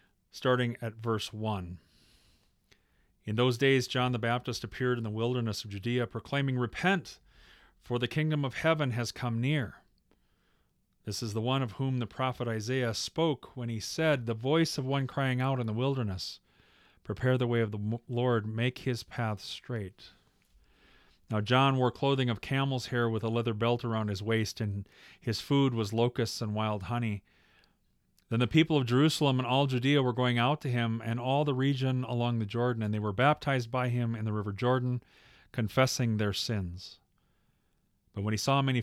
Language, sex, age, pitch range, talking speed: English, male, 40-59, 110-135 Hz, 180 wpm